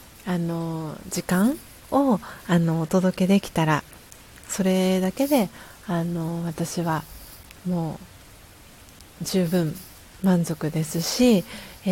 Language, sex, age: Japanese, female, 40-59